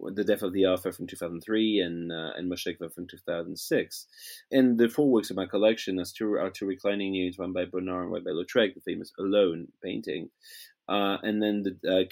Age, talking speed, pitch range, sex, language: 30-49, 200 wpm, 90-115 Hz, male, English